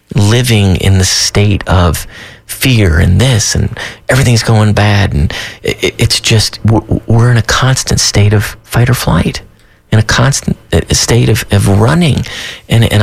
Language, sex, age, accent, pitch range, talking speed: English, male, 30-49, American, 100-120 Hz, 150 wpm